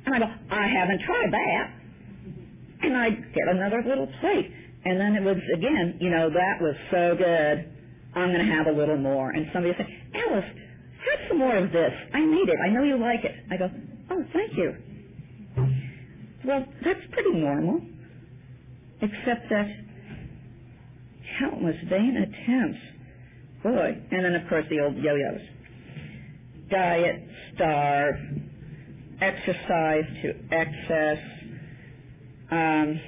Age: 50-69